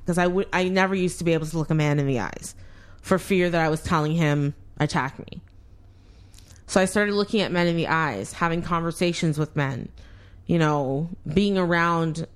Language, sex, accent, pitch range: English, female, American, 105-175 Hz